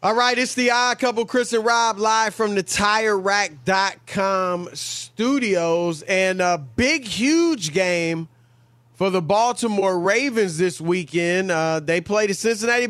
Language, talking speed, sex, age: English, 140 wpm, male, 30-49